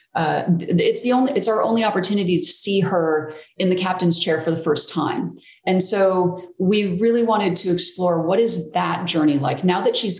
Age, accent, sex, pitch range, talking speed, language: 30-49, American, female, 155-185 Hz, 200 wpm, English